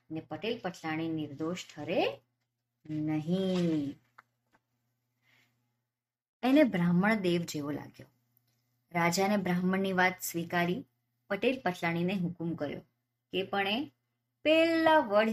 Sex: male